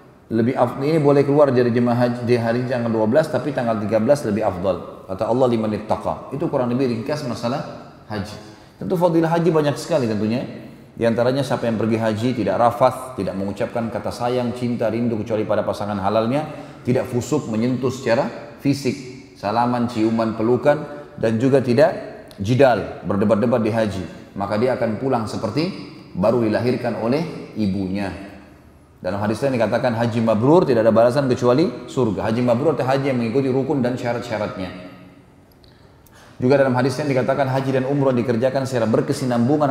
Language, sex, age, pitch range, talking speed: Indonesian, male, 30-49, 115-135 Hz, 155 wpm